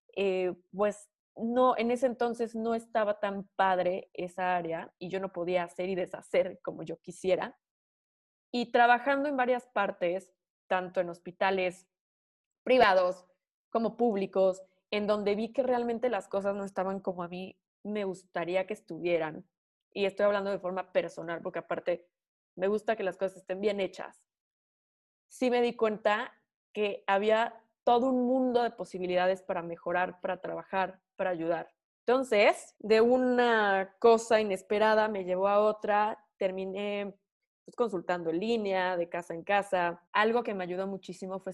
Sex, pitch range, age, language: female, 185-220 Hz, 20-39, Spanish